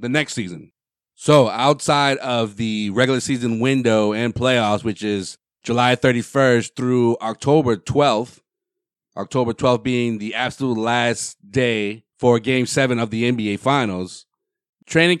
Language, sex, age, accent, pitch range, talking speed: English, male, 30-49, American, 115-140 Hz, 135 wpm